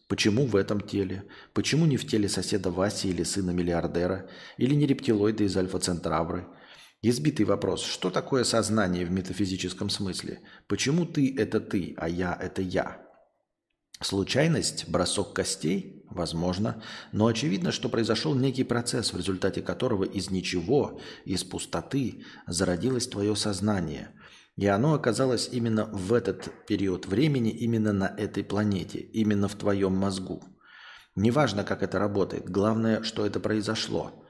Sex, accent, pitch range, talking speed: male, native, 95-120 Hz, 135 wpm